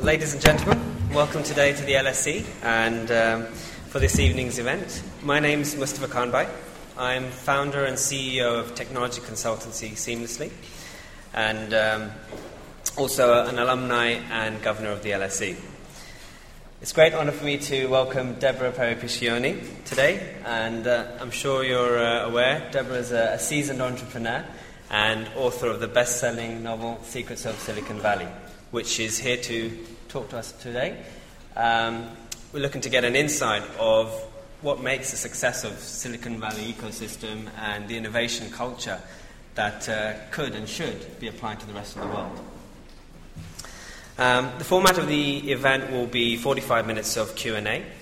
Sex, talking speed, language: male, 155 wpm, English